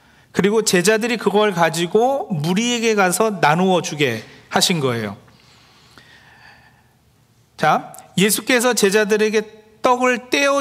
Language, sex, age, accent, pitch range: Korean, male, 40-59, native, 160-240 Hz